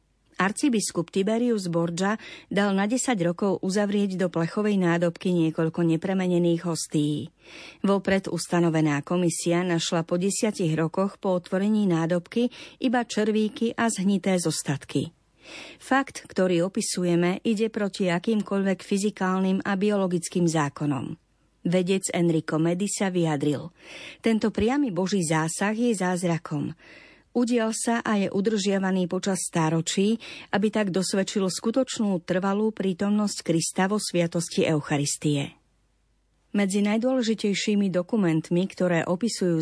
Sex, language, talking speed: female, Slovak, 110 wpm